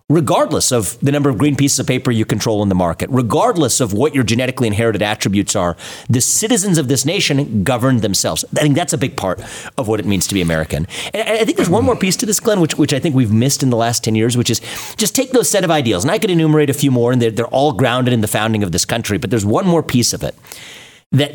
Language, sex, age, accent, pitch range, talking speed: English, male, 40-59, American, 115-150 Hz, 275 wpm